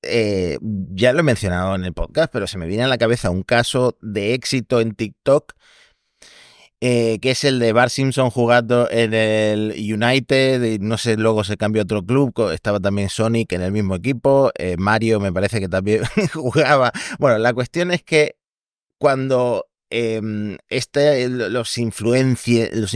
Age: 30-49